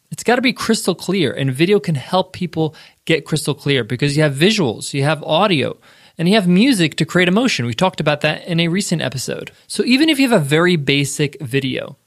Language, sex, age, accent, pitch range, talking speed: English, male, 20-39, American, 140-190 Hz, 220 wpm